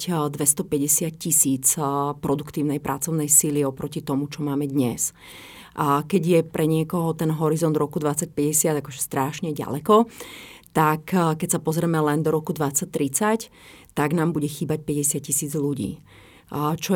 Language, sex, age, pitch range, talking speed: Slovak, female, 30-49, 150-165 Hz, 130 wpm